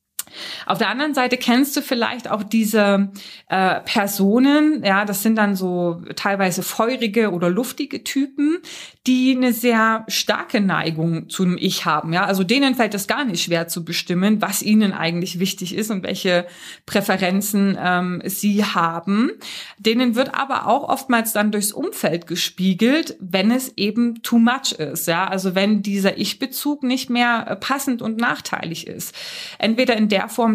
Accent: German